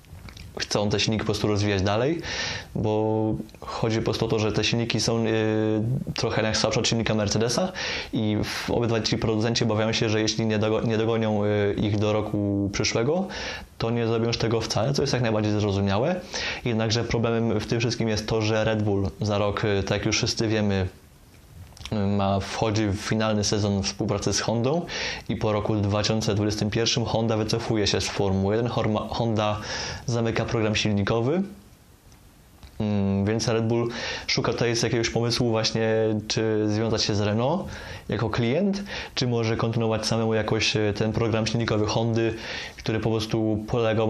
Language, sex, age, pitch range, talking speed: Polish, male, 20-39, 105-115 Hz, 155 wpm